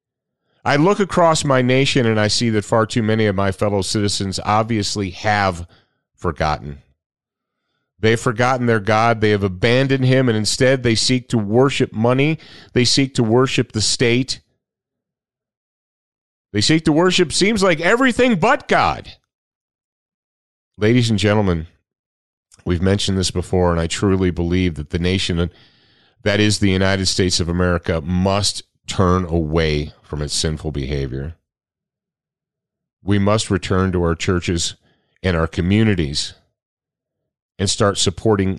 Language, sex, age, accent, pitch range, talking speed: English, male, 40-59, American, 90-125 Hz, 140 wpm